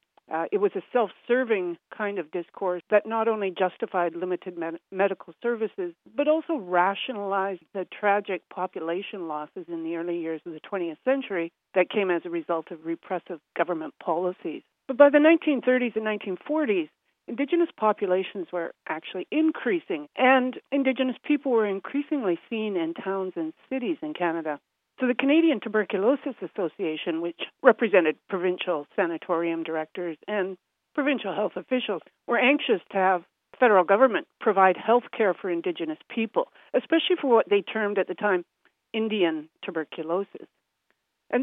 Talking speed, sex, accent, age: 145 wpm, female, American, 60-79